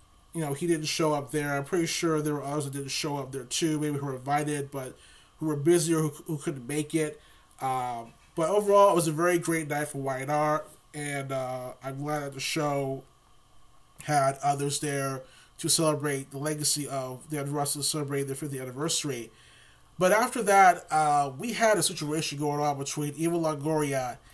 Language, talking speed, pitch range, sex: English, 190 wpm, 140-170 Hz, male